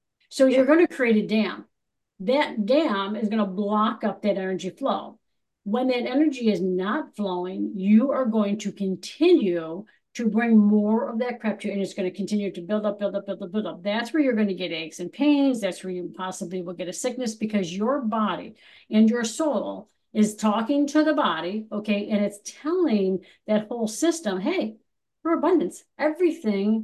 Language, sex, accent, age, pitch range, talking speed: English, female, American, 50-69, 205-270 Hz, 200 wpm